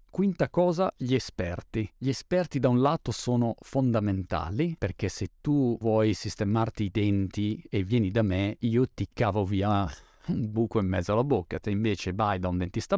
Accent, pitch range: native, 105-130 Hz